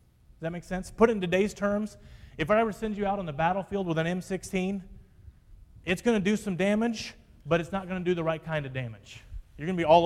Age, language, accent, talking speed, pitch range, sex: 30-49, English, American, 255 wpm, 130-175 Hz, male